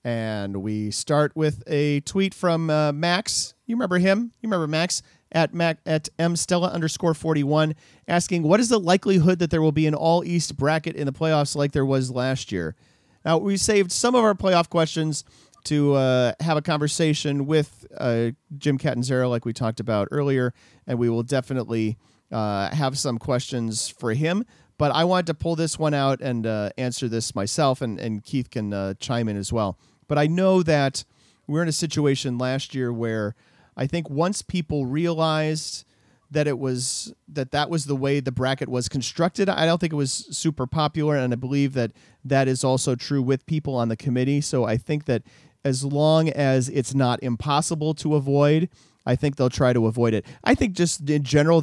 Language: English